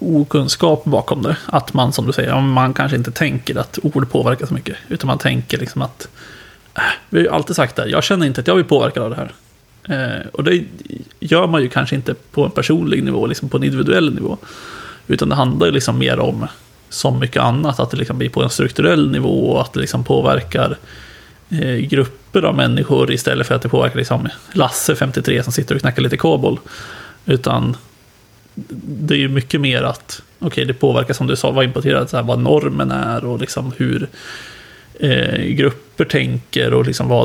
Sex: male